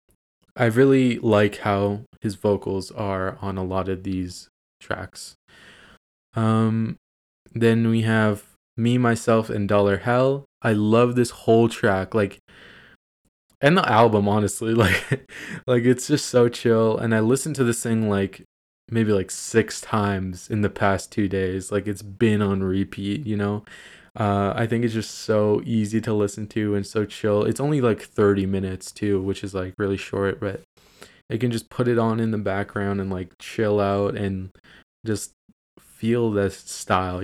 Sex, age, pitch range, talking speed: male, 20-39, 100-120 Hz, 170 wpm